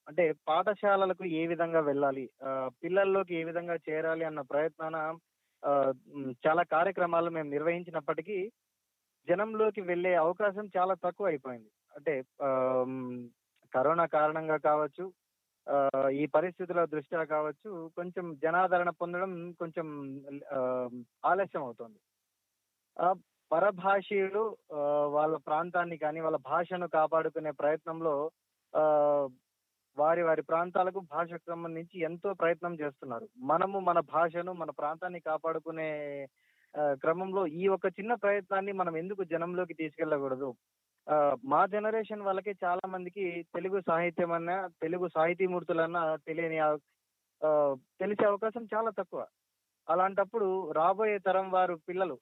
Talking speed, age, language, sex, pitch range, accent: 105 wpm, 20-39, Telugu, male, 150-185 Hz, native